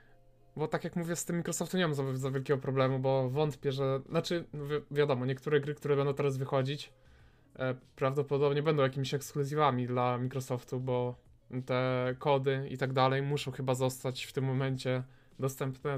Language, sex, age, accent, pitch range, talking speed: Polish, male, 20-39, native, 130-145 Hz, 170 wpm